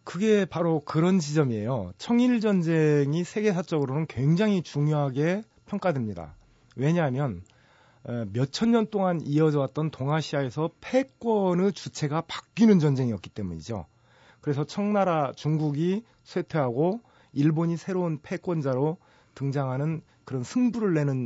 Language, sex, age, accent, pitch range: Korean, male, 30-49, native, 130-185 Hz